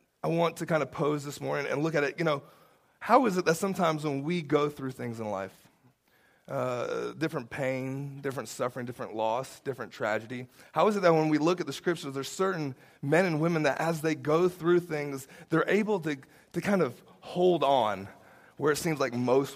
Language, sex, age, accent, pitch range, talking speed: English, male, 30-49, American, 140-180 Hz, 210 wpm